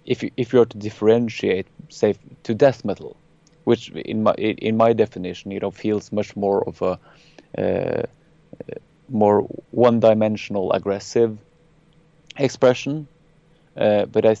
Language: English